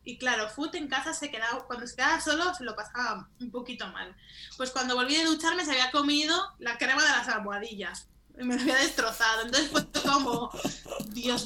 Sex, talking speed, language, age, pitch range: female, 200 wpm, Spanish, 10-29, 230-290 Hz